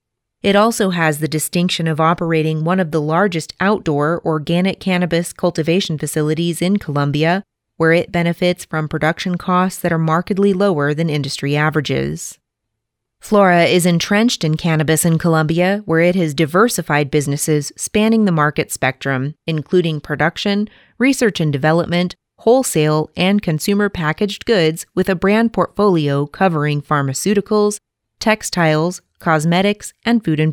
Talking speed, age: 135 wpm, 30-49